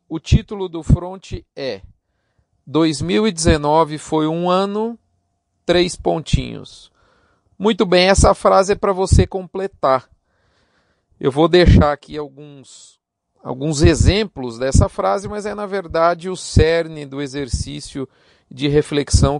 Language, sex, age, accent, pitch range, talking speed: Portuguese, male, 40-59, Brazilian, 135-180 Hz, 120 wpm